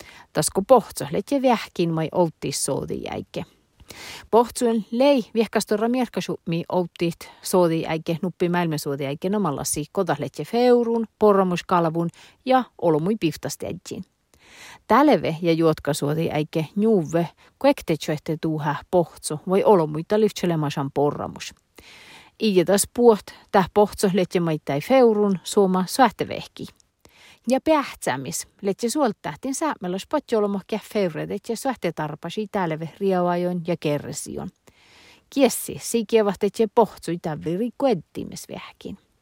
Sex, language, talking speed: female, Finnish, 100 wpm